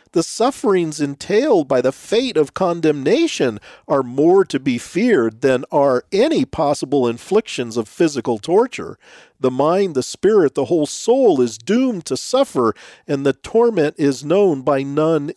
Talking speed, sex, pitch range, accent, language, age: 150 wpm, male, 150-240 Hz, American, English, 40-59